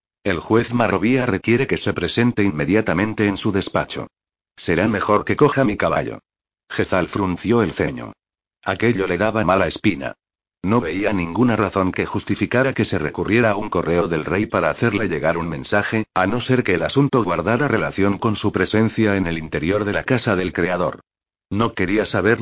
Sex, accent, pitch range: male, Spanish, 95-115 Hz